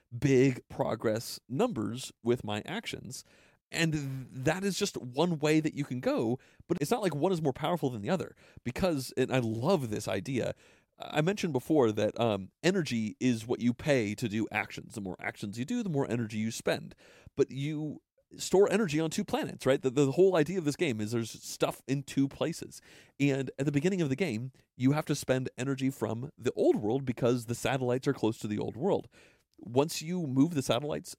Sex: male